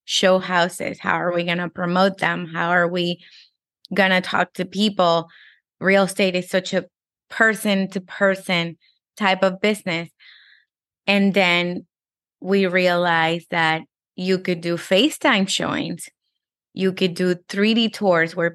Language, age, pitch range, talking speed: English, 20-39, 175-200 Hz, 140 wpm